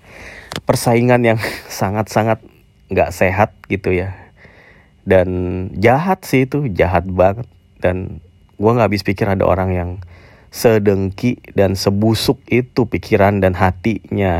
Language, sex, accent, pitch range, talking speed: Indonesian, male, native, 95-110 Hz, 115 wpm